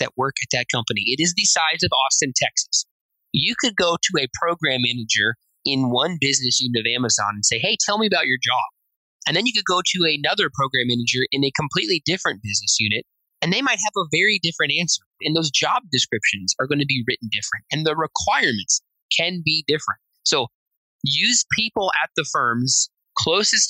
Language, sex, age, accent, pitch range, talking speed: English, male, 20-39, American, 115-160 Hz, 195 wpm